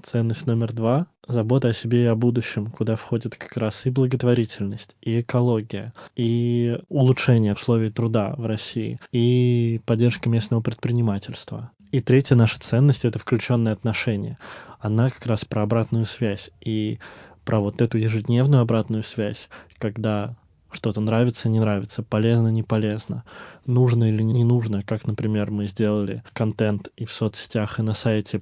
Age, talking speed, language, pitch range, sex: 20-39, 150 wpm, Russian, 110-120 Hz, male